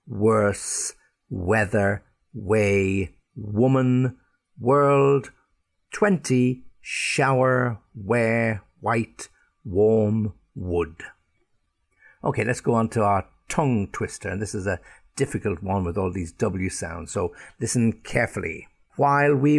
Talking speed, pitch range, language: 105 wpm, 100-125 Hz, English